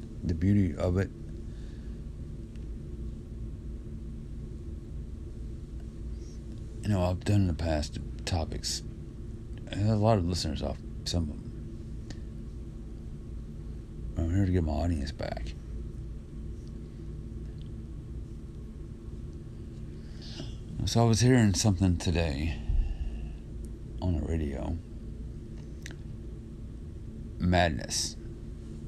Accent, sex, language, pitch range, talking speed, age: American, male, English, 75-95 Hz, 80 wpm, 50-69